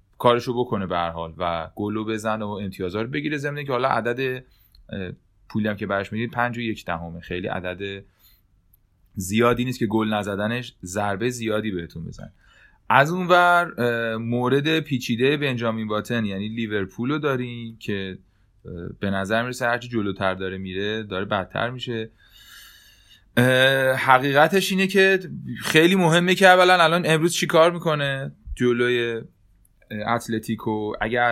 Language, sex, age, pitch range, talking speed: Persian, male, 30-49, 100-120 Hz, 130 wpm